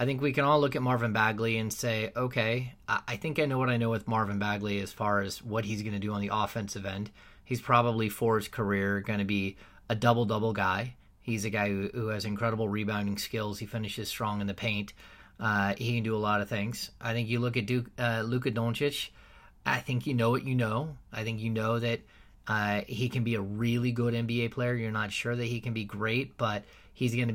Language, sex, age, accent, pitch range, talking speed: English, male, 30-49, American, 105-120 Hz, 240 wpm